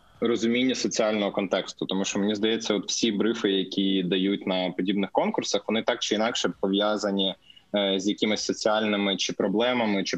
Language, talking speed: Ukrainian, 160 wpm